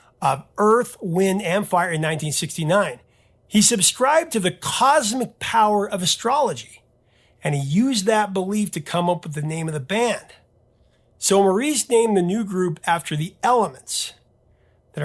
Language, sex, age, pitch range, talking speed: English, male, 40-59, 155-215 Hz, 155 wpm